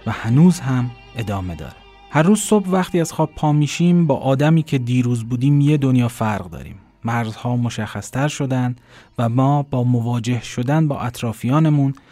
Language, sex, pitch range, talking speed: Persian, male, 110-145 Hz, 160 wpm